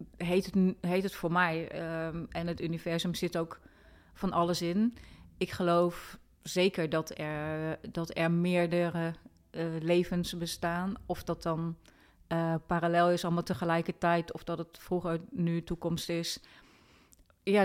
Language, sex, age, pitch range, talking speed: Dutch, female, 30-49, 160-195 Hz, 135 wpm